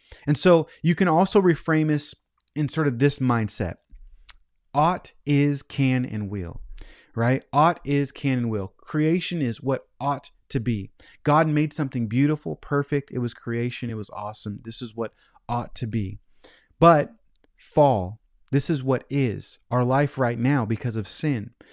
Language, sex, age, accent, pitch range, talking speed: English, male, 30-49, American, 115-150 Hz, 165 wpm